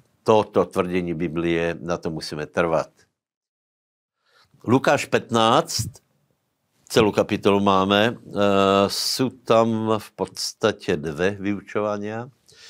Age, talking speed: 70-89, 90 wpm